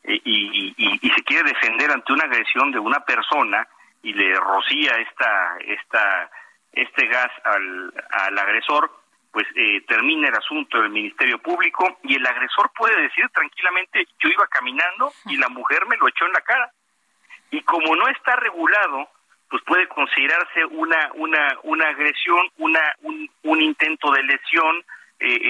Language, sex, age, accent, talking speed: Spanish, male, 50-69, Mexican, 150 wpm